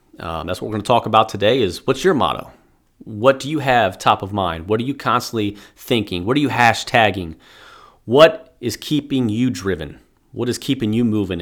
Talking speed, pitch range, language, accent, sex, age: 205 wpm, 105-125 Hz, English, American, male, 30-49